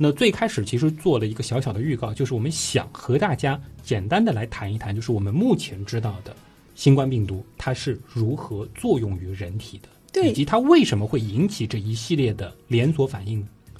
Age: 20-39